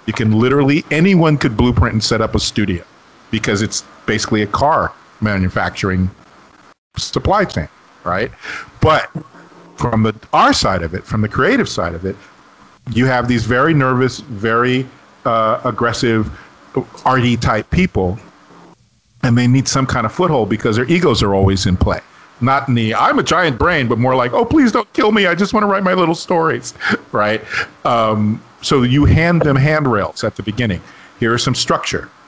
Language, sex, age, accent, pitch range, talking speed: English, male, 50-69, American, 105-130 Hz, 175 wpm